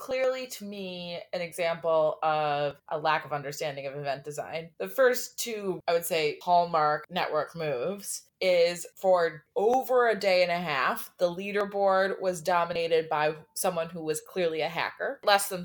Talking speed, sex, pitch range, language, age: 165 wpm, female, 165-225 Hz, English, 20-39